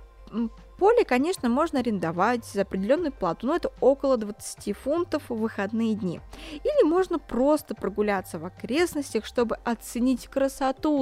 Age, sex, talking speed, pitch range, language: 20-39, female, 130 wpm, 215-310 Hz, Russian